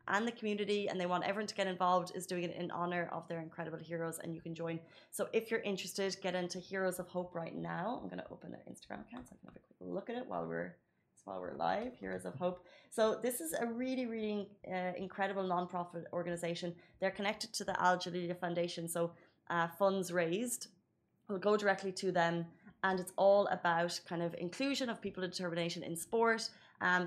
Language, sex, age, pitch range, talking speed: Arabic, female, 20-39, 170-195 Hz, 215 wpm